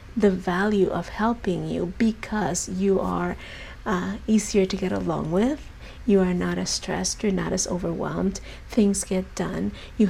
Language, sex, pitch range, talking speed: English, female, 185-220 Hz, 160 wpm